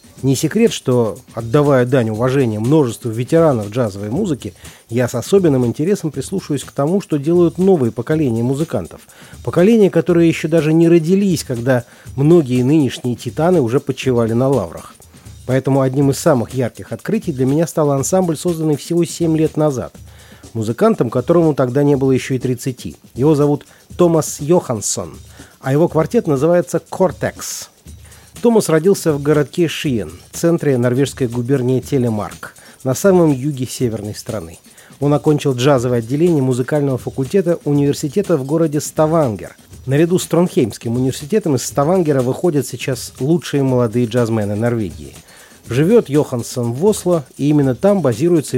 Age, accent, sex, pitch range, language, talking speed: 40-59, native, male, 120-155 Hz, Russian, 140 wpm